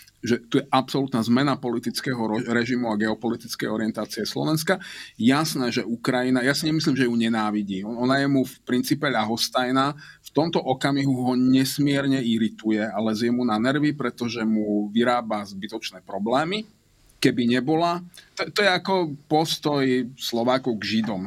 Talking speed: 145 wpm